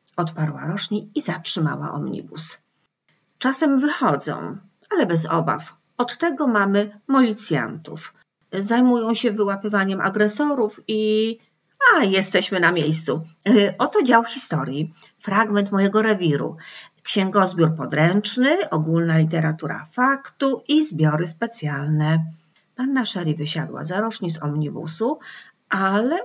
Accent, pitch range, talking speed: native, 165-225 Hz, 105 wpm